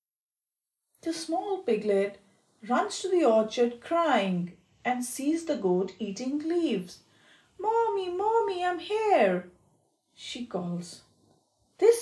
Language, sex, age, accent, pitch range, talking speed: English, female, 40-59, Indian, 200-335 Hz, 105 wpm